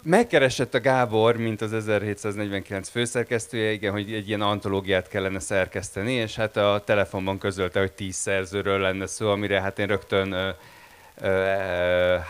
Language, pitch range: Hungarian, 100-115 Hz